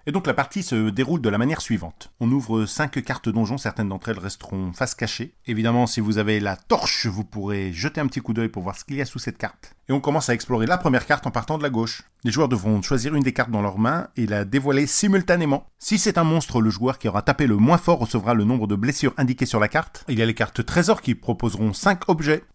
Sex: male